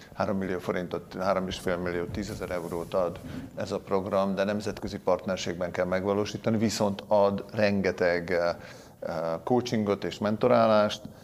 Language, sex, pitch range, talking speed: Hungarian, male, 90-110 Hz, 115 wpm